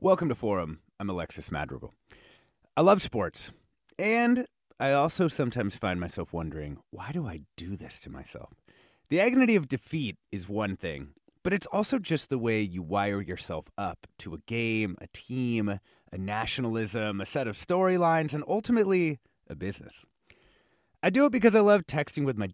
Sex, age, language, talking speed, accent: male, 30-49, English, 170 wpm, American